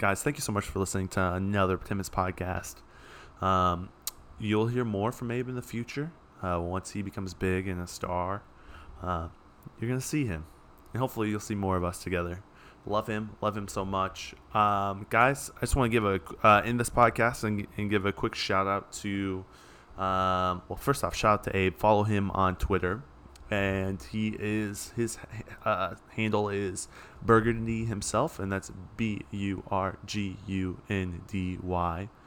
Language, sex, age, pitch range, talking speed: English, male, 20-39, 90-110 Hz, 175 wpm